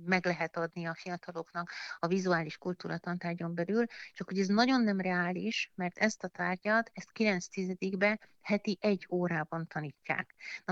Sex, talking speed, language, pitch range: female, 150 wpm, Hungarian, 165-190 Hz